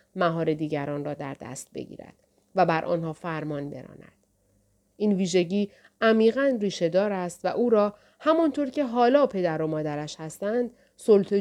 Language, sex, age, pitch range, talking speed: Persian, female, 30-49, 145-220 Hz, 140 wpm